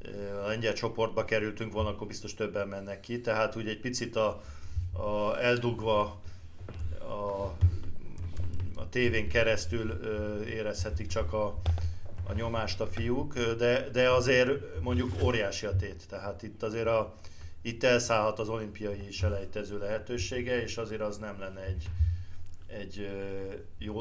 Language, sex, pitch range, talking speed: Hungarian, male, 95-115 Hz, 135 wpm